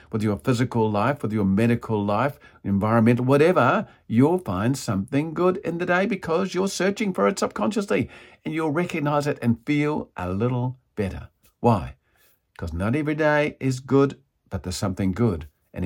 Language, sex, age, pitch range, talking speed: English, male, 50-69, 110-165 Hz, 165 wpm